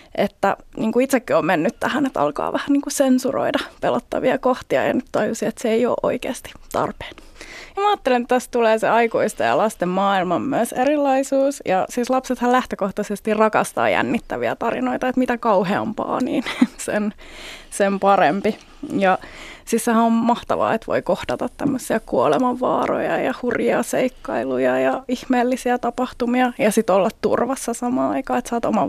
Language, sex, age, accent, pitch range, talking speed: Finnish, female, 20-39, native, 225-275 Hz, 155 wpm